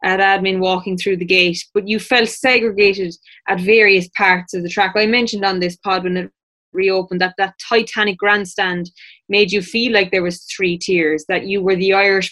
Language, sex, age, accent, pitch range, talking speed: English, female, 20-39, Irish, 185-225 Hz, 200 wpm